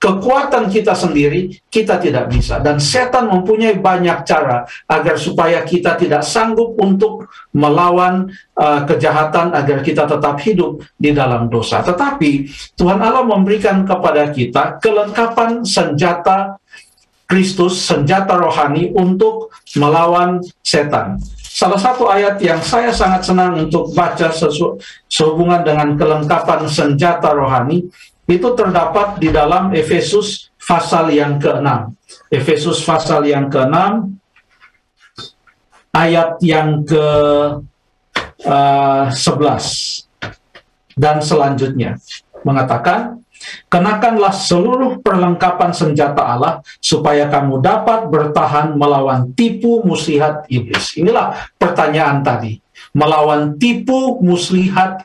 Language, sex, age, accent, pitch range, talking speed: Indonesian, male, 50-69, native, 150-195 Hz, 100 wpm